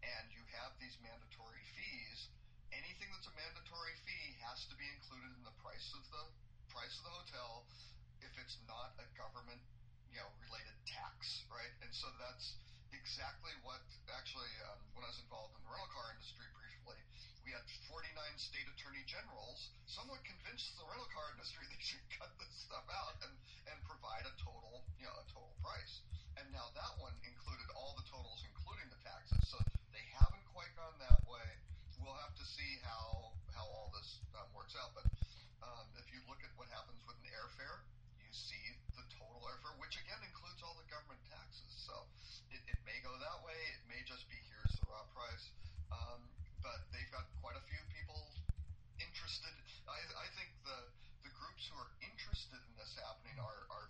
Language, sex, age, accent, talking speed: English, male, 40-59, American, 185 wpm